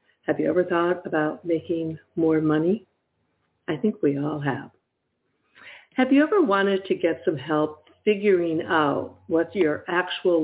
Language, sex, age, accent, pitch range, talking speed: English, female, 60-79, American, 145-180 Hz, 150 wpm